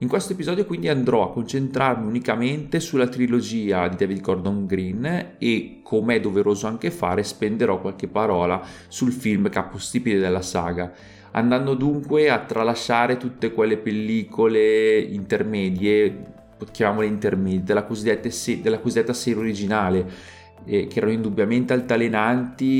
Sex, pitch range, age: male, 100-115 Hz, 30-49